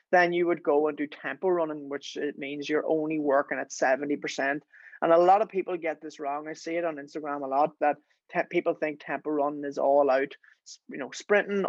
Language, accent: English, Irish